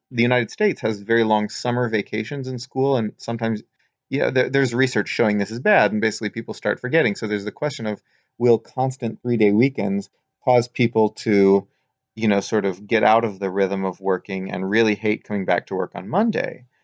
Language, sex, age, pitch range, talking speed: English, male, 30-49, 100-115 Hz, 205 wpm